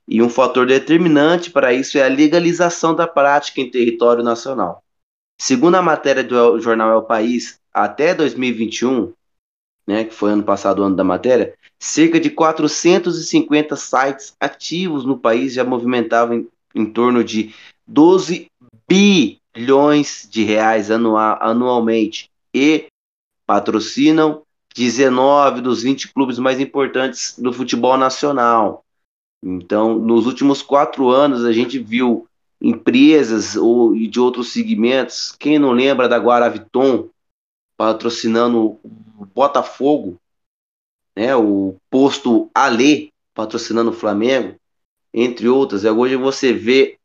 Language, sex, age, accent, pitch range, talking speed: Portuguese, male, 20-39, Brazilian, 115-145 Hz, 120 wpm